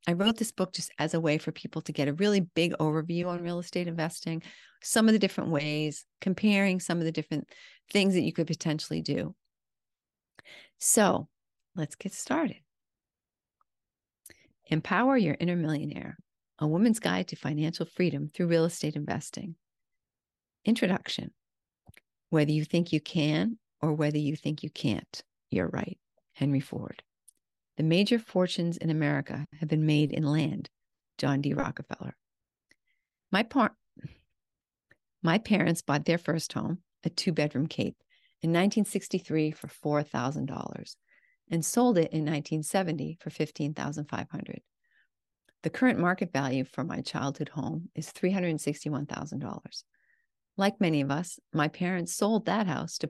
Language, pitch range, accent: English, 150-190 Hz, American